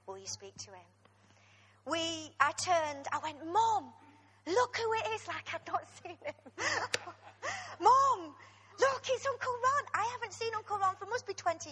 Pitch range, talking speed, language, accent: 230-330 Hz, 170 wpm, English, British